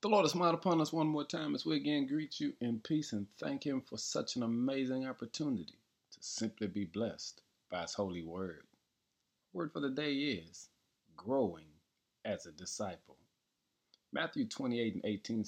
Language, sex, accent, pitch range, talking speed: English, male, American, 95-125 Hz, 175 wpm